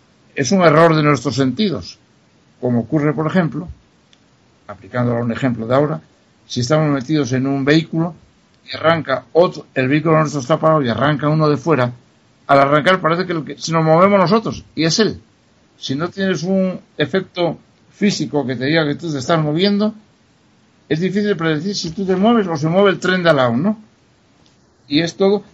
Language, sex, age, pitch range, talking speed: Spanish, male, 60-79, 130-190 Hz, 185 wpm